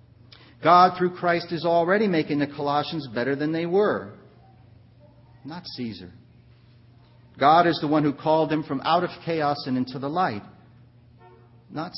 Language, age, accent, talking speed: English, 40-59, American, 150 wpm